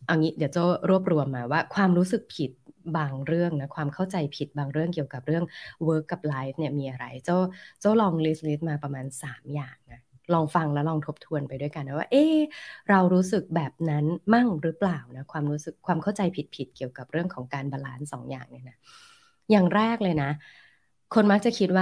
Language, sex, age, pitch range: Thai, female, 20-39, 145-185 Hz